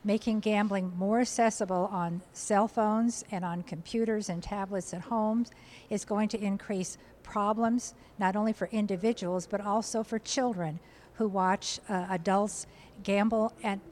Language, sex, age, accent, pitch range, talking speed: English, female, 50-69, American, 185-215 Hz, 140 wpm